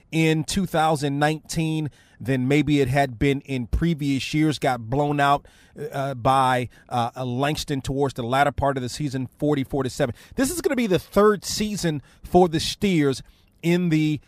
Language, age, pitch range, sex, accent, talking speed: English, 30-49, 130-160 Hz, male, American, 165 wpm